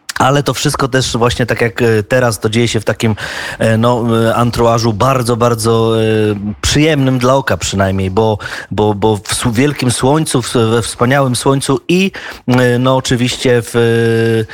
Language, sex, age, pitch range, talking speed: Polish, male, 30-49, 120-145 Hz, 135 wpm